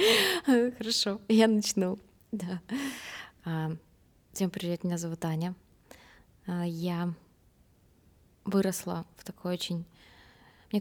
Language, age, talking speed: Russian, 20-39, 85 wpm